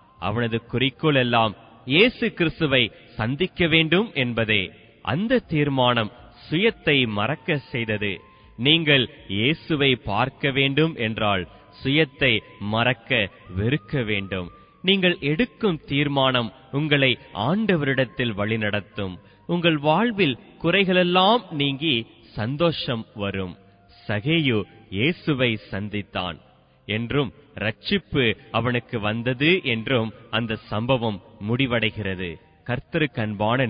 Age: 30-49